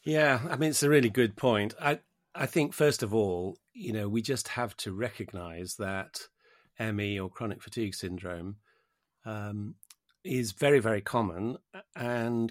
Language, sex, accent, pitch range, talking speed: English, male, British, 95-120 Hz, 160 wpm